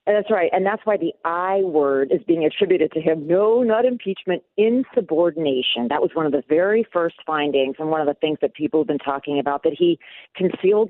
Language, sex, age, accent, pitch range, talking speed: English, female, 40-59, American, 160-225 Hz, 215 wpm